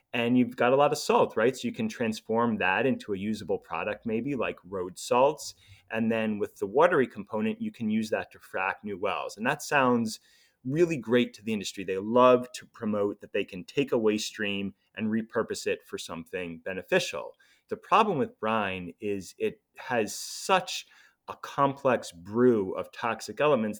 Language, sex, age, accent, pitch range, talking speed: English, male, 30-49, American, 100-150 Hz, 185 wpm